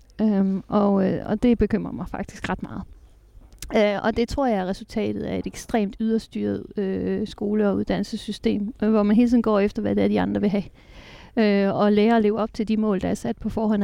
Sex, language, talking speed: female, Danish, 225 wpm